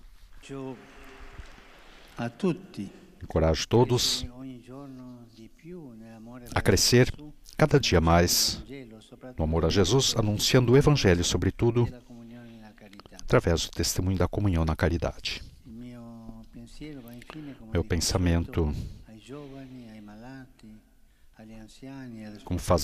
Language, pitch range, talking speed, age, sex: Portuguese, 90-125 Hz, 70 wpm, 60-79, male